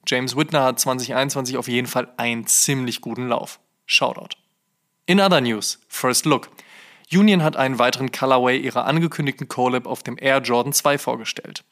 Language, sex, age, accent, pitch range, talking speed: German, male, 20-39, German, 125-160 Hz, 160 wpm